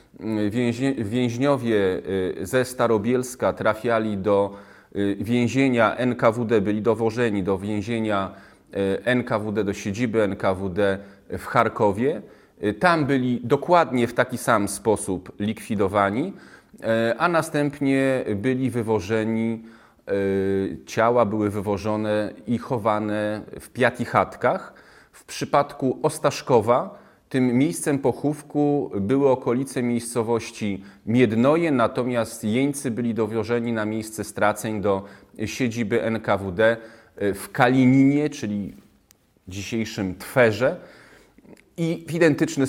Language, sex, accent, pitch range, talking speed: Polish, male, native, 100-125 Hz, 90 wpm